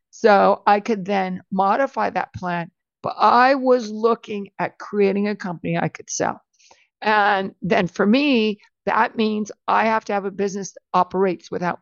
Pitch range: 185-225 Hz